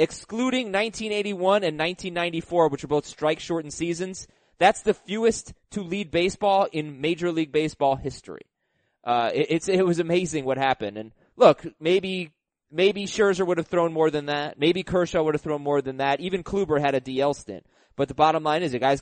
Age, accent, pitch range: 20-39, American, 135-170 Hz